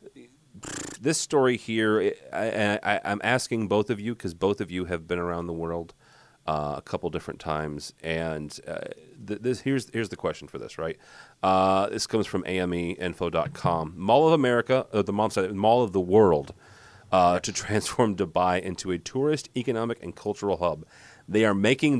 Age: 30-49